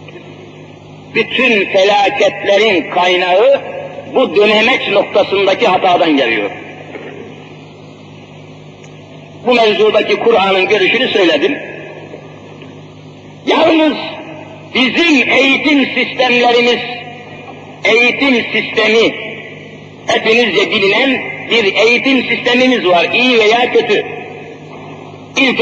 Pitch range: 230-270 Hz